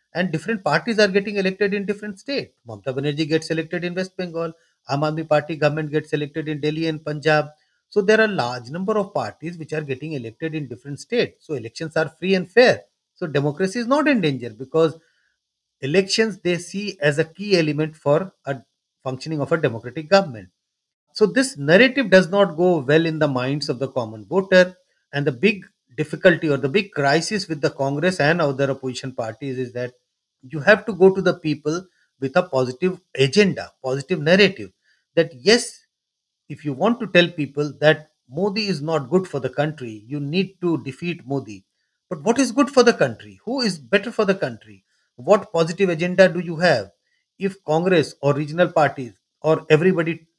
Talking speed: 185 wpm